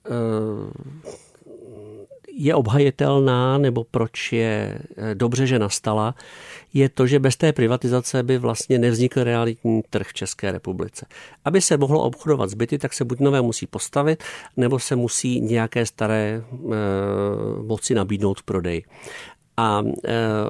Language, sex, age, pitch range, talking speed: Czech, male, 50-69, 110-145 Hz, 125 wpm